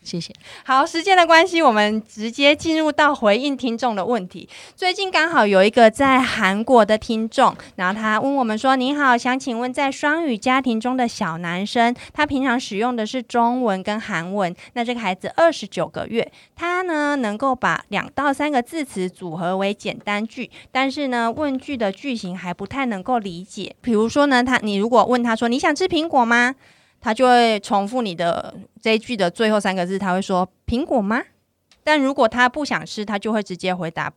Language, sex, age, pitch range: Chinese, female, 30-49, 200-260 Hz